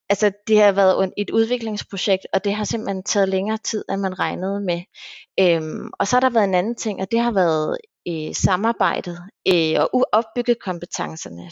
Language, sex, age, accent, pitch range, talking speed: Danish, female, 30-49, native, 180-225 Hz, 190 wpm